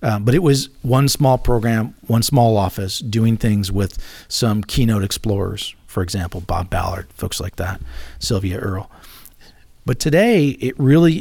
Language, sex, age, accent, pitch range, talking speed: English, male, 40-59, American, 105-125 Hz, 155 wpm